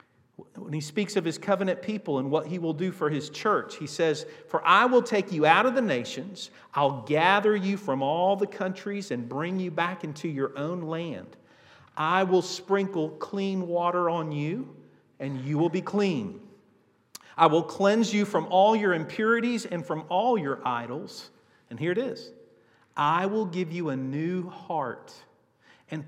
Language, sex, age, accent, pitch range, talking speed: English, male, 50-69, American, 140-200 Hz, 180 wpm